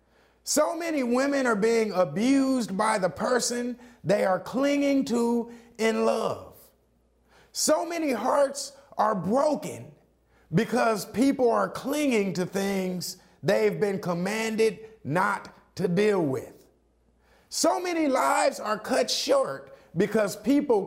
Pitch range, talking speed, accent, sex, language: 180-245 Hz, 120 wpm, American, male, English